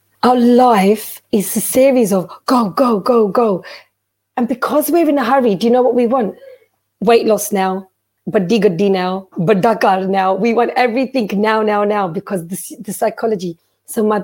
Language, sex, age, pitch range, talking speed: Punjabi, female, 30-49, 200-245 Hz, 175 wpm